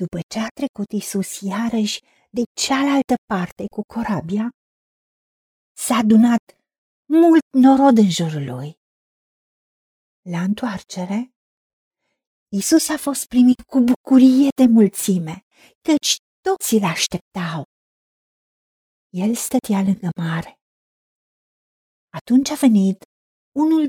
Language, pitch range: Romanian, 215-300 Hz